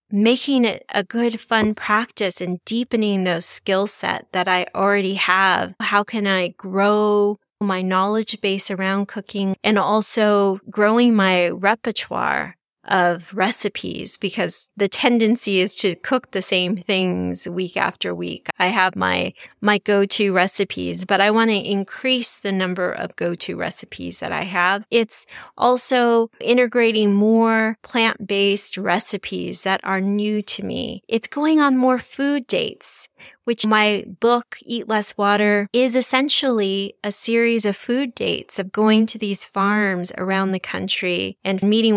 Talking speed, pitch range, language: 145 wpm, 190-225 Hz, English